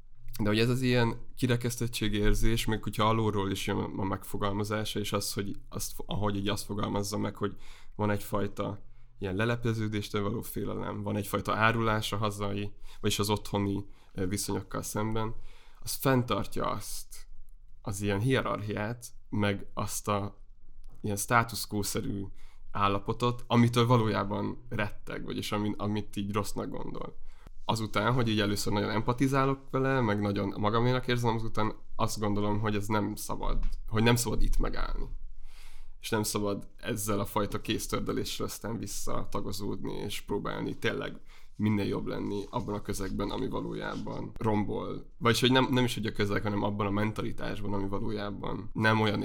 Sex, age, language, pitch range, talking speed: male, 20-39, Hungarian, 100-115 Hz, 145 wpm